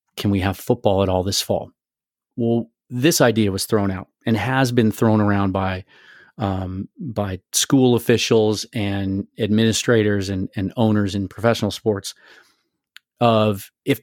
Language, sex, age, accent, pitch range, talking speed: English, male, 30-49, American, 105-120 Hz, 145 wpm